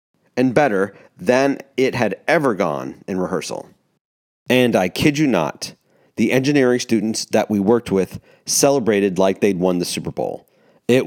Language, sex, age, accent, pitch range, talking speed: English, male, 40-59, American, 100-135 Hz, 155 wpm